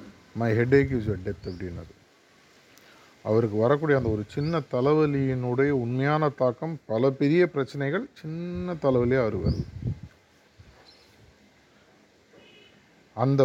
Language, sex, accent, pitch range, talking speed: Tamil, male, native, 110-145 Hz, 85 wpm